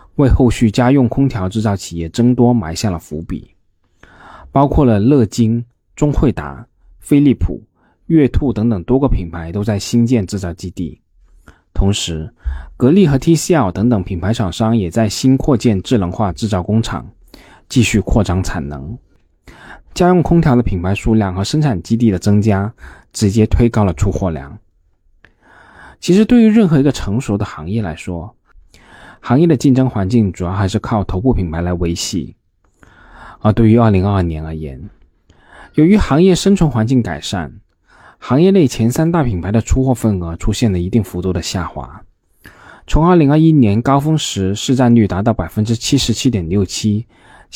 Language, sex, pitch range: Chinese, male, 90-125 Hz